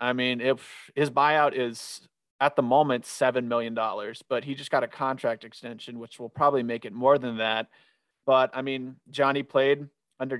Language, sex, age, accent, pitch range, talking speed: English, male, 30-49, American, 120-135 Hz, 185 wpm